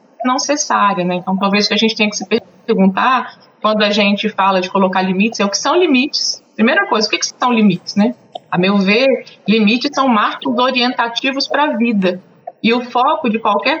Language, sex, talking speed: Portuguese, female, 210 wpm